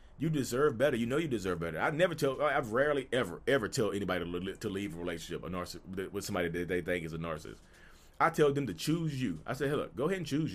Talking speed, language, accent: 255 wpm, English, American